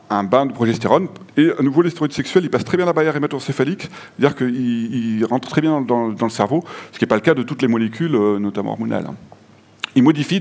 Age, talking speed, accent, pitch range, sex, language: 40-59, 225 wpm, French, 100-140 Hz, male, French